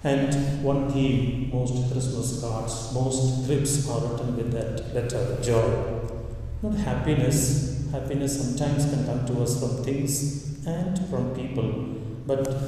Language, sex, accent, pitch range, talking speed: English, male, Indian, 115-140 Hz, 130 wpm